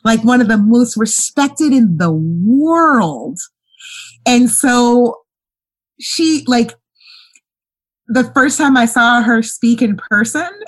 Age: 30-49